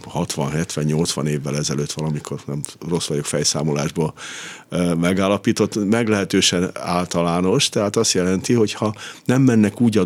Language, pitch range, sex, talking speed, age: Hungarian, 80-110 Hz, male, 120 wpm, 50-69